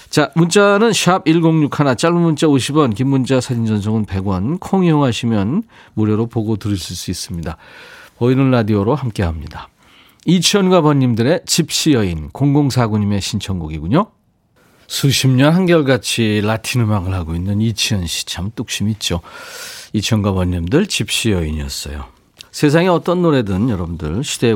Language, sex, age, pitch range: Korean, male, 40-59, 90-135 Hz